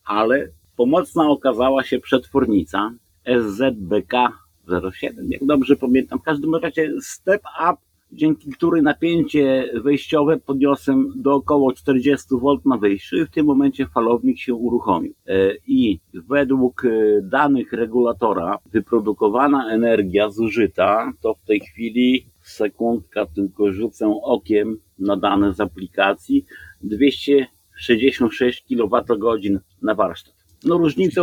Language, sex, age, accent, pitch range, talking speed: Polish, male, 50-69, native, 110-140 Hz, 110 wpm